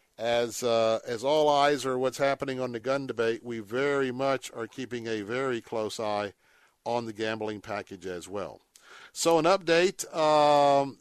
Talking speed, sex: 170 wpm, male